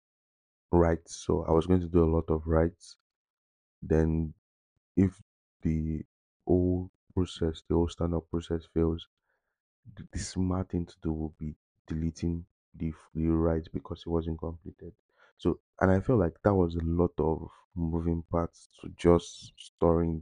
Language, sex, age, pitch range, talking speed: English, male, 20-39, 80-90 Hz, 150 wpm